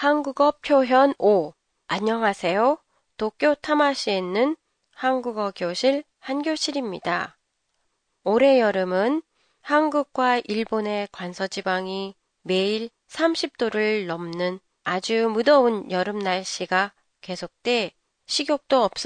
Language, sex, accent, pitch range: Japanese, female, Korean, 190-270 Hz